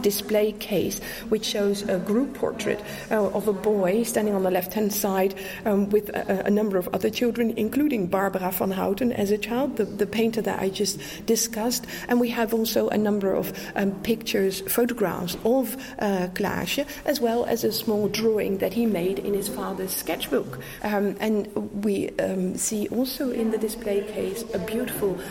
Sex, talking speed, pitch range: female, 185 wpm, 195-230 Hz